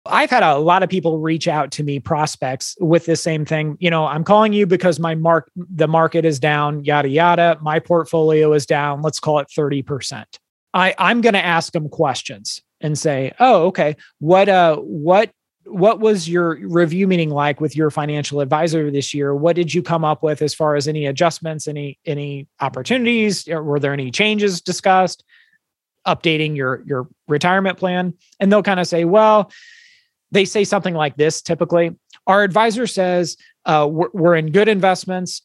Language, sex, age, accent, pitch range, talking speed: English, male, 30-49, American, 150-185 Hz, 185 wpm